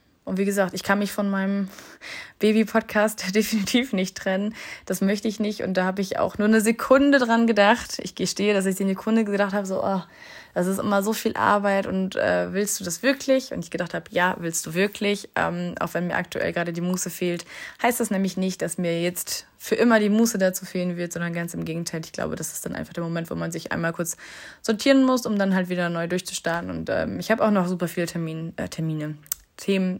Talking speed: 230 wpm